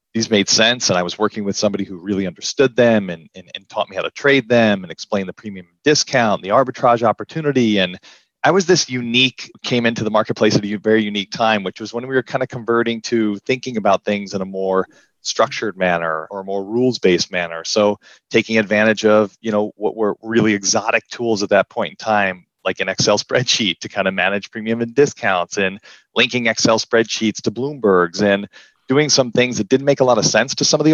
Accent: American